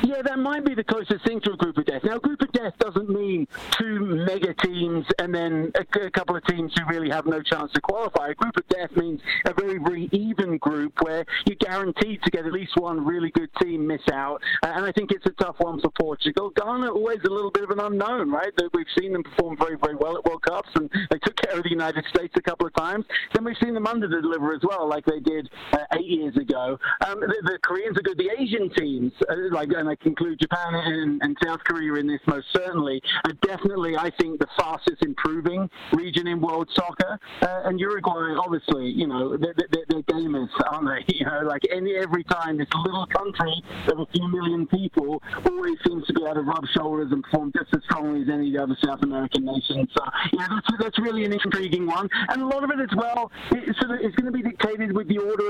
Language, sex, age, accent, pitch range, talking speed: English, male, 50-69, British, 160-225 Hz, 240 wpm